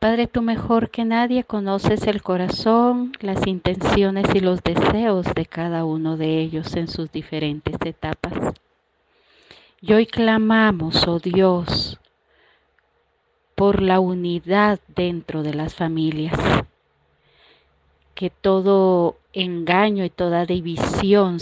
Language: Spanish